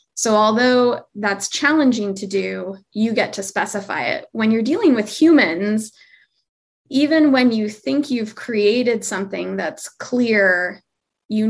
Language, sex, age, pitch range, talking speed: English, female, 20-39, 200-250 Hz, 135 wpm